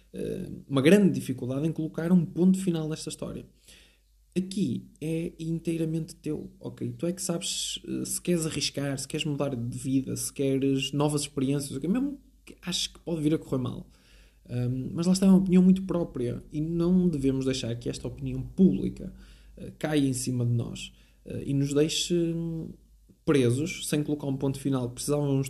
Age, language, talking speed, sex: 20-39, Portuguese, 175 wpm, male